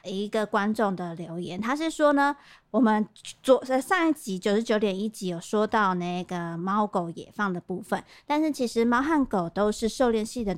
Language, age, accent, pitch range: Chinese, 30-49, American, 195-250 Hz